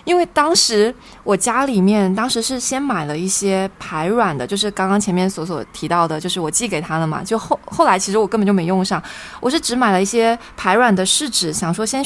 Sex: female